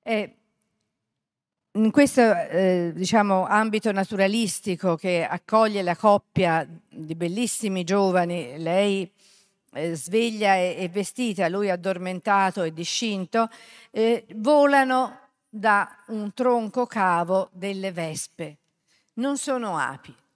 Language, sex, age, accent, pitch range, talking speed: Italian, female, 50-69, native, 180-230 Hz, 95 wpm